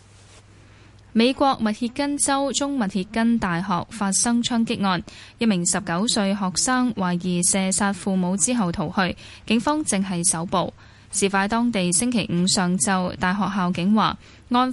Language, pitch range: Chinese, 180-230 Hz